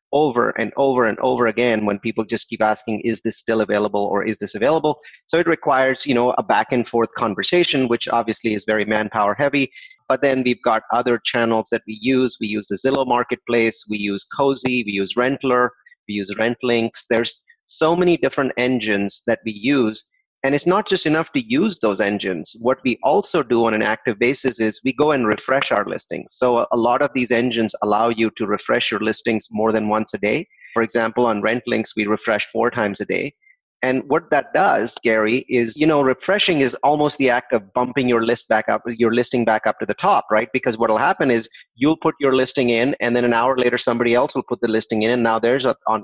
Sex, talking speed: male, 225 wpm